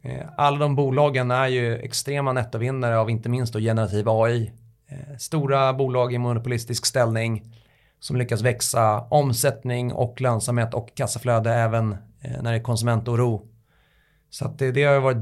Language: Swedish